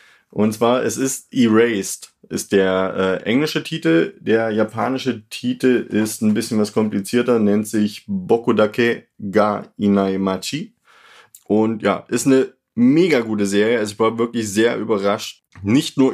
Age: 20-39